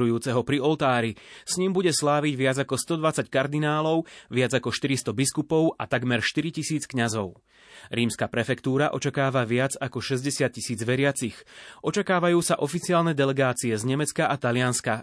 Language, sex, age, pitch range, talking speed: Slovak, male, 30-49, 120-150 Hz, 135 wpm